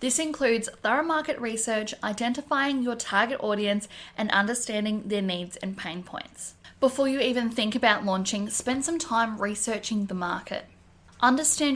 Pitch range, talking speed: 205-255 Hz, 150 wpm